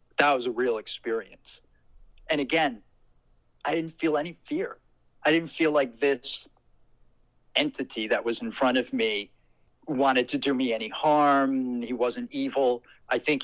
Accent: American